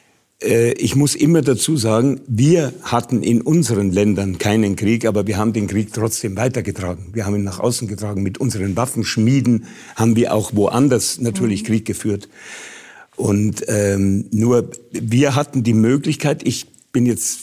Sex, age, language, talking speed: male, 50-69, German, 155 wpm